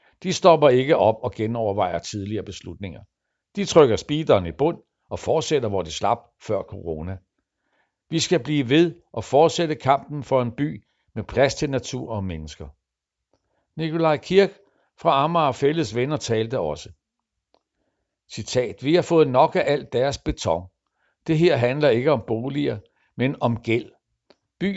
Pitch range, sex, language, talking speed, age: 105-140 Hz, male, Danish, 155 wpm, 60-79